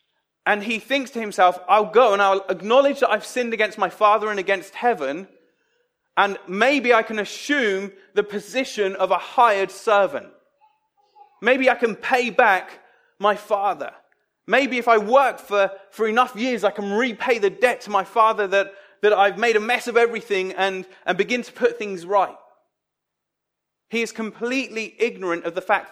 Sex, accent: male, British